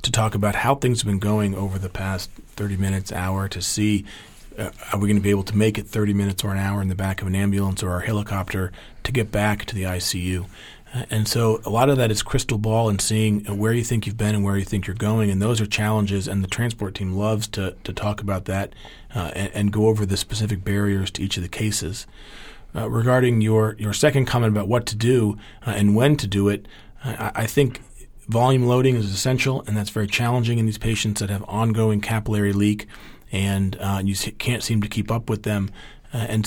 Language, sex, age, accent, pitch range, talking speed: English, male, 40-59, American, 100-110 Hz, 235 wpm